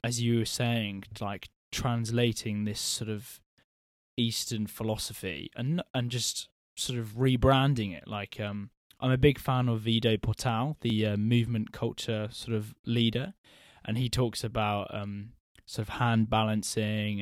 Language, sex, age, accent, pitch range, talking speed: English, male, 10-29, British, 110-125 Hz, 150 wpm